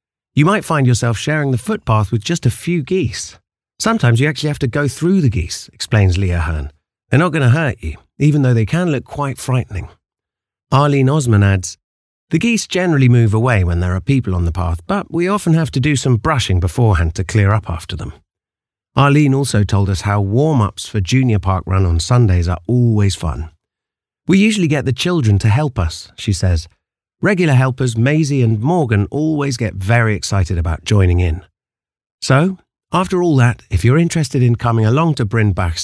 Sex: male